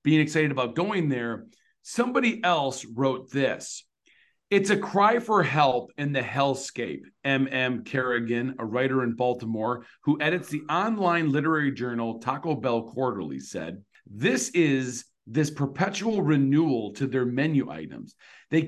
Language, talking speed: English, 140 wpm